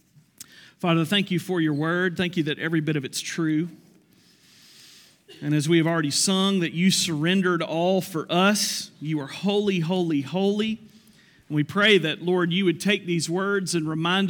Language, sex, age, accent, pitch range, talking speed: English, male, 40-59, American, 155-185 Hz, 180 wpm